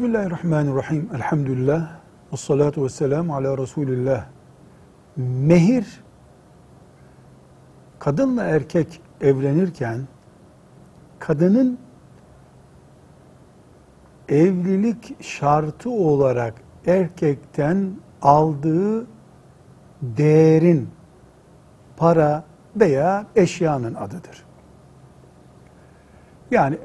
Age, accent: 60-79, native